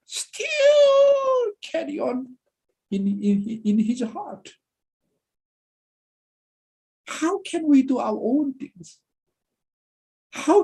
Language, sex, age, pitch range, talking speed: English, male, 60-79, 215-305 Hz, 90 wpm